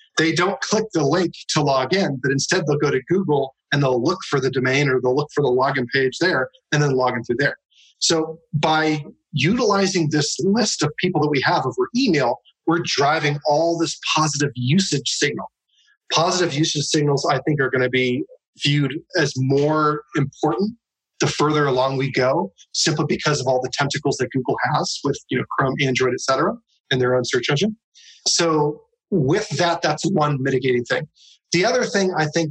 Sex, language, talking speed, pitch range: male, English, 190 wpm, 140-175 Hz